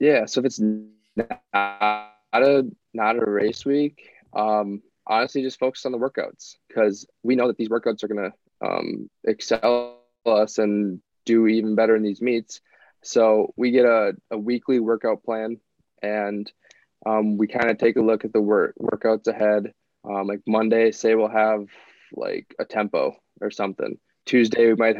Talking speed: 170 wpm